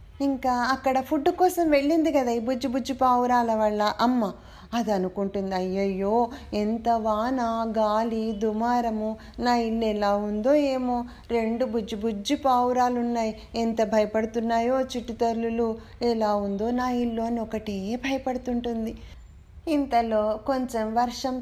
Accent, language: native, Telugu